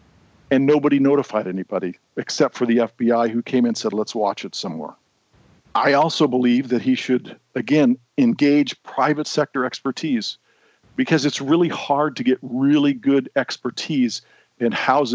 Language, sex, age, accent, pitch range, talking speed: English, male, 50-69, American, 120-145 Hz, 150 wpm